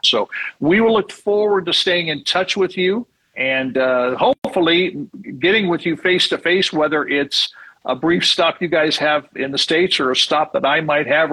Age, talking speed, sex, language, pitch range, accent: 50-69, 190 wpm, male, English, 130-180 Hz, American